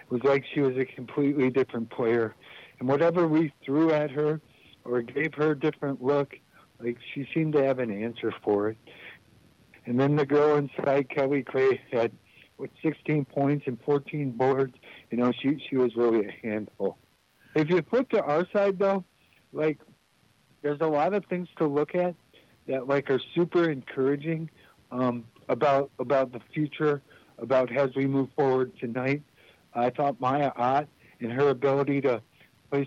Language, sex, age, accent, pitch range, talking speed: English, male, 60-79, American, 125-145 Hz, 170 wpm